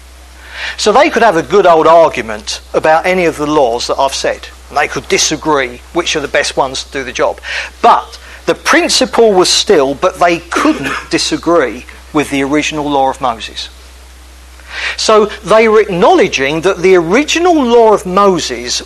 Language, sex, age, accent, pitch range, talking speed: English, male, 40-59, British, 135-220 Hz, 170 wpm